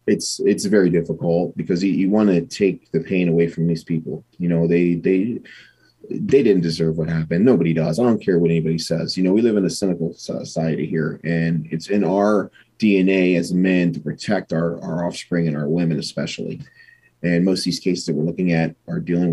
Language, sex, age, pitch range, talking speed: English, male, 30-49, 85-95 Hz, 215 wpm